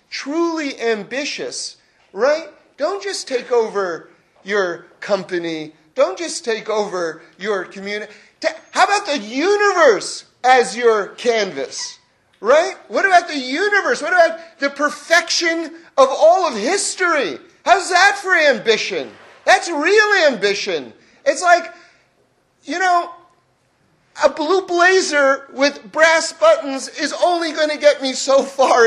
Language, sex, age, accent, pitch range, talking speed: English, male, 40-59, American, 255-345 Hz, 125 wpm